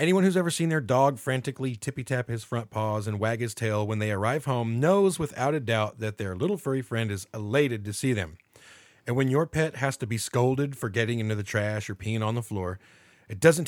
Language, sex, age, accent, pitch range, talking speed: English, male, 40-59, American, 105-130 Hz, 230 wpm